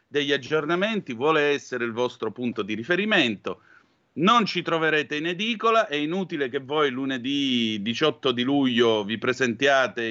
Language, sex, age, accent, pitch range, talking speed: Italian, male, 40-59, native, 115-160 Hz, 140 wpm